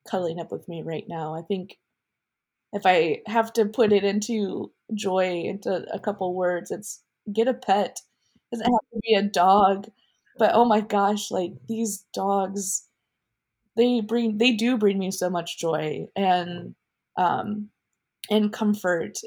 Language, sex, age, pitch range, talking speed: English, female, 20-39, 180-215 Hz, 160 wpm